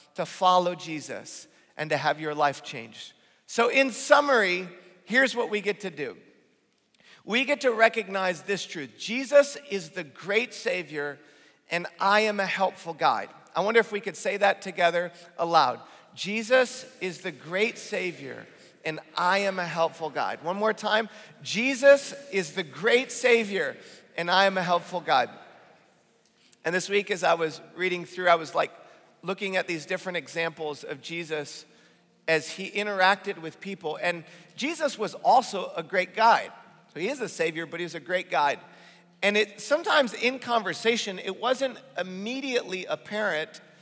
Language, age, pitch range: English, 40-59, 170-215 Hz